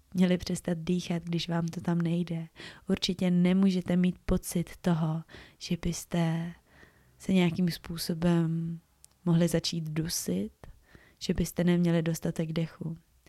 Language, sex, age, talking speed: Czech, female, 20-39, 115 wpm